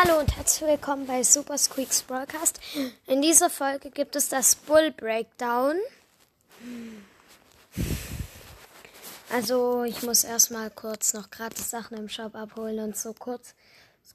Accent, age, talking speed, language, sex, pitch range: German, 10-29, 130 wpm, German, female, 225-280 Hz